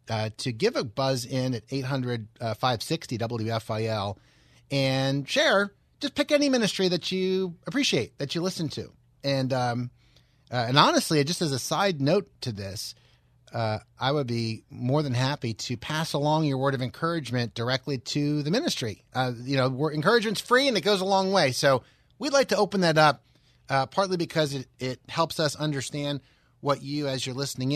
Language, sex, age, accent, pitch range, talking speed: English, male, 30-49, American, 120-155 Hz, 180 wpm